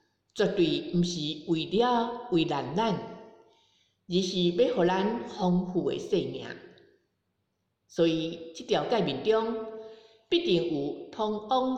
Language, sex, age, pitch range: Chinese, female, 50-69, 170-255 Hz